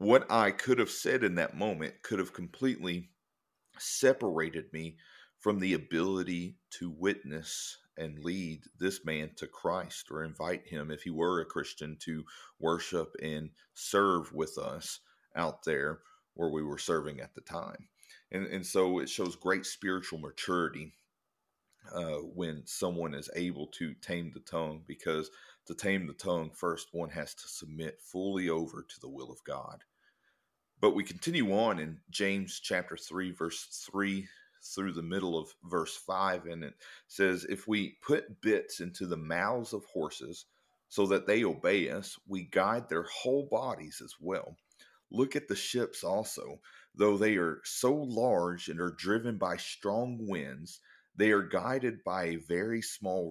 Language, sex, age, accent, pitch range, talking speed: English, male, 40-59, American, 80-95 Hz, 160 wpm